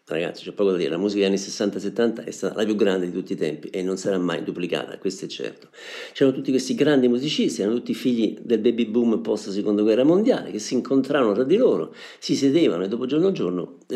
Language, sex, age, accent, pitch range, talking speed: Italian, male, 50-69, native, 95-125 Hz, 230 wpm